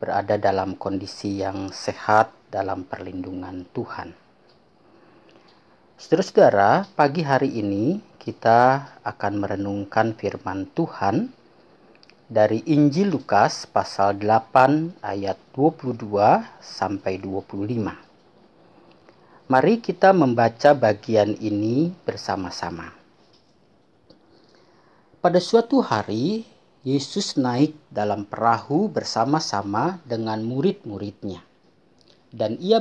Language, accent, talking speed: Indonesian, native, 80 wpm